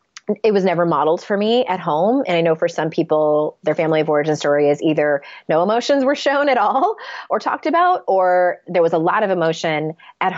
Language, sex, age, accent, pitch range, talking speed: English, female, 30-49, American, 155-190 Hz, 220 wpm